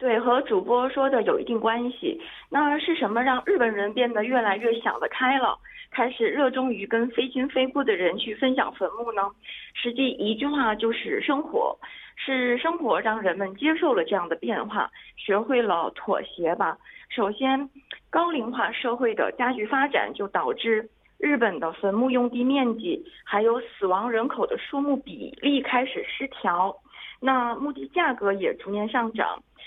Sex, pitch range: female, 220-275 Hz